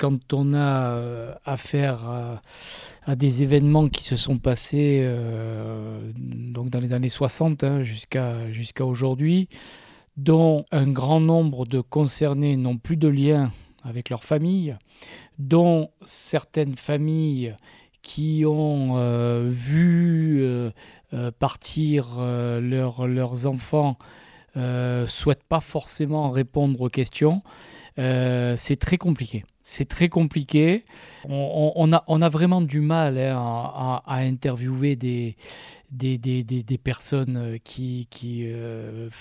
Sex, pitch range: male, 125-150 Hz